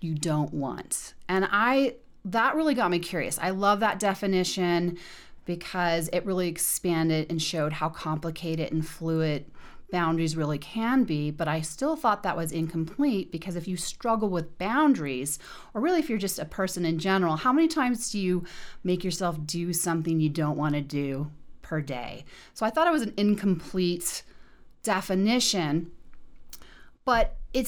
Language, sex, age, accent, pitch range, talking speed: English, female, 30-49, American, 160-200 Hz, 165 wpm